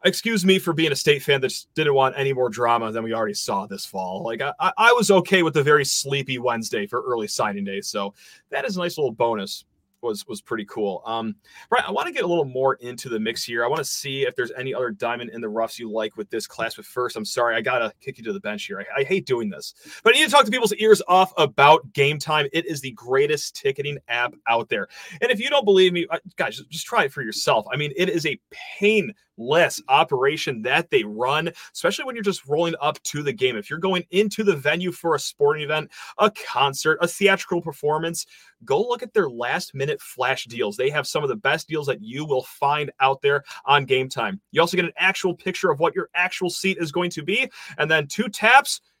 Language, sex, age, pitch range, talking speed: English, male, 30-49, 135-195 Hz, 245 wpm